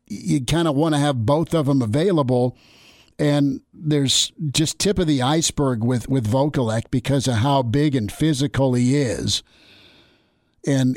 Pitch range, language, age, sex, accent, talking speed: 125-150 Hz, English, 50-69, male, American, 155 wpm